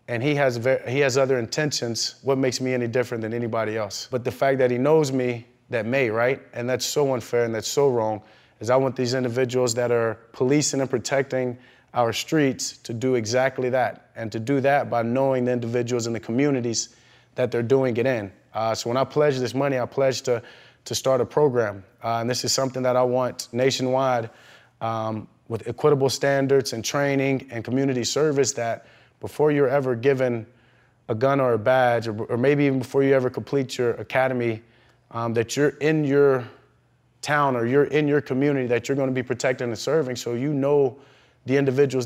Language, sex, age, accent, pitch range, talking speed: English, male, 30-49, American, 115-135 Hz, 200 wpm